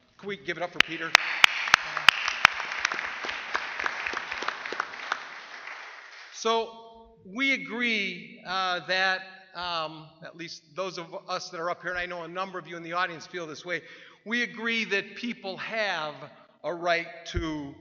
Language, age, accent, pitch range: English, 50-69, American, 150-190 Hz